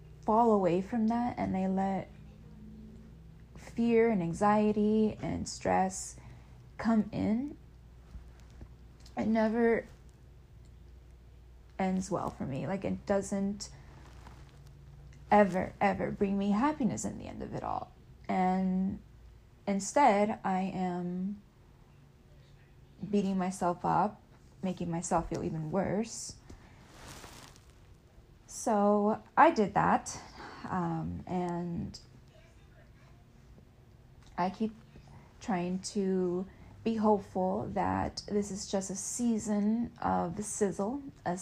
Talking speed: 100 wpm